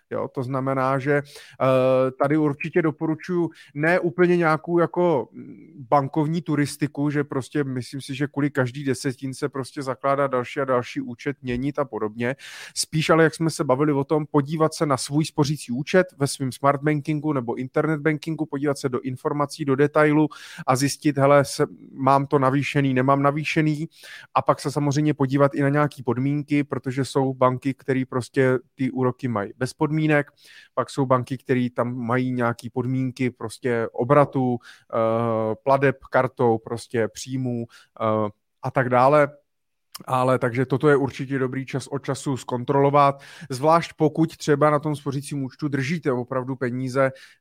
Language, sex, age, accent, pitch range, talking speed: Czech, male, 30-49, native, 130-150 Hz, 160 wpm